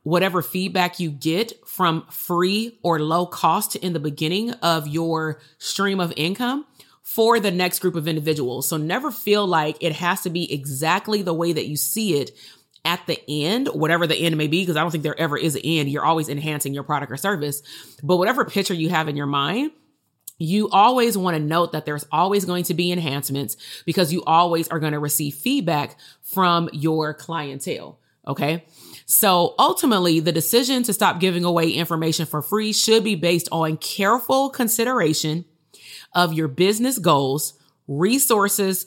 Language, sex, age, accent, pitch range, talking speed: English, female, 30-49, American, 155-200 Hz, 175 wpm